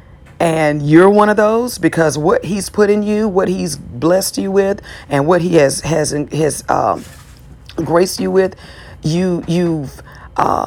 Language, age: English, 40-59